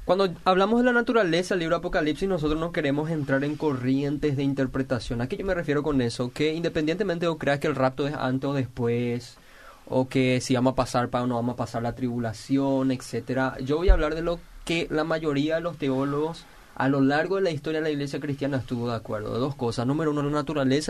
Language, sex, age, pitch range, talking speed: Spanish, male, 20-39, 130-165 Hz, 240 wpm